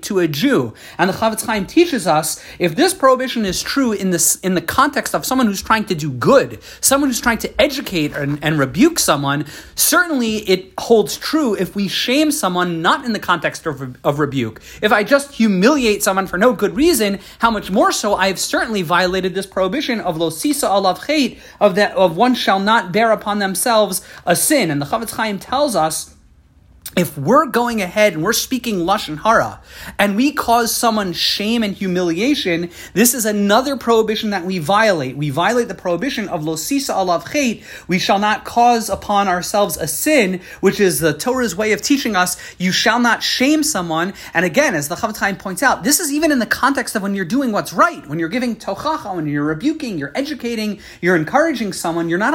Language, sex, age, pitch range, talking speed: English, male, 30-49, 180-250 Hz, 200 wpm